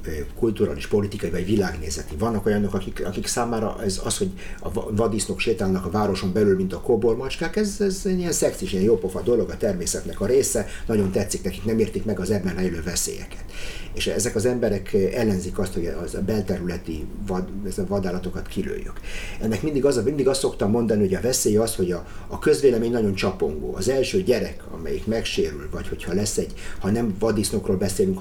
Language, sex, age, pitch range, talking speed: Hungarian, male, 50-69, 90-110 Hz, 190 wpm